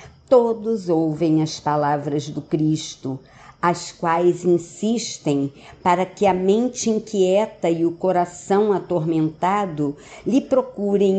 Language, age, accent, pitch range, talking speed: Portuguese, 50-69, Brazilian, 150-195 Hz, 105 wpm